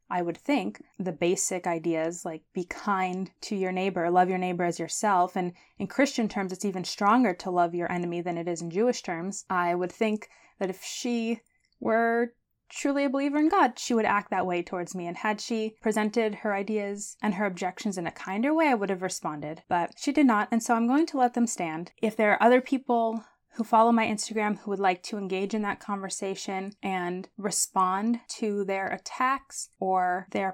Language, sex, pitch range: English, female, 185-235 Hz